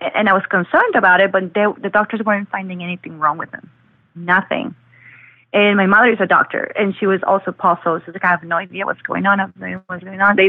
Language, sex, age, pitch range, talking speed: English, female, 30-49, 170-200 Hz, 245 wpm